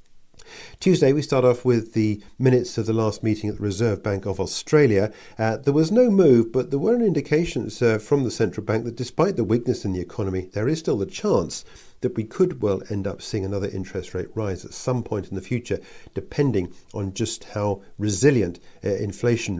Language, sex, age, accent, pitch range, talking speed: English, male, 50-69, British, 100-125 Hz, 205 wpm